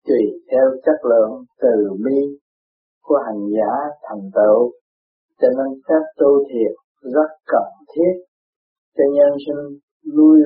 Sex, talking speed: male, 130 wpm